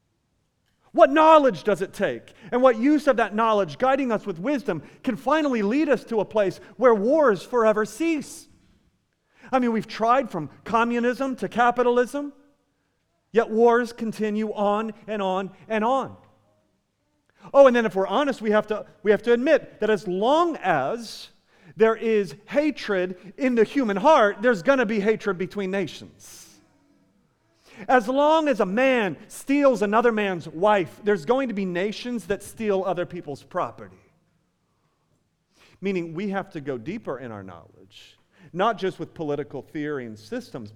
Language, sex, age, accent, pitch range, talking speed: English, male, 40-59, American, 175-245 Hz, 155 wpm